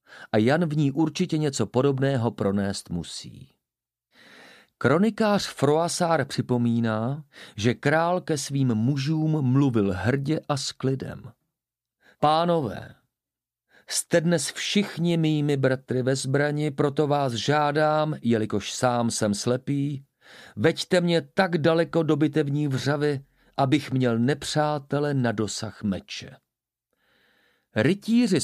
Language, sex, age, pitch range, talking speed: Czech, male, 40-59, 120-155 Hz, 110 wpm